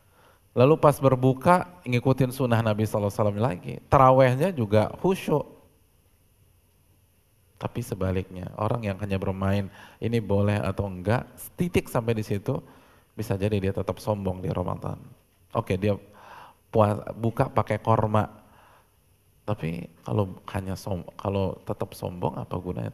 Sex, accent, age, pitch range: male, native, 20-39, 95-115 Hz